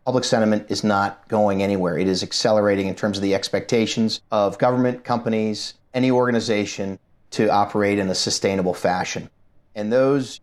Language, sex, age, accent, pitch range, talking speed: English, male, 30-49, American, 105-115 Hz, 155 wpm